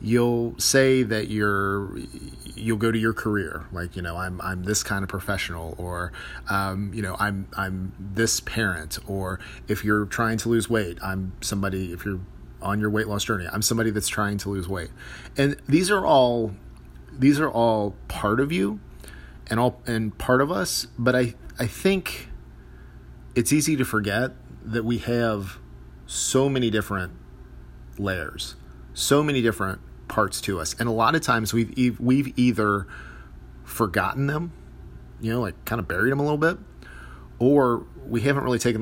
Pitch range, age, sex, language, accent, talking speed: 95-120 Hz, 40-59, male, English, American, 170 wpm